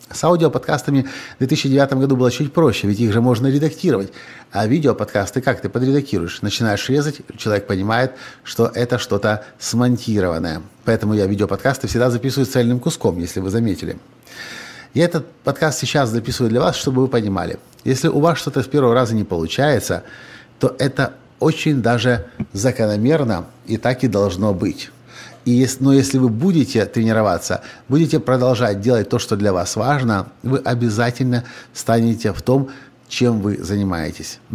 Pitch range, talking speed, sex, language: 105-135 Hz, 150 wpm, male, Russian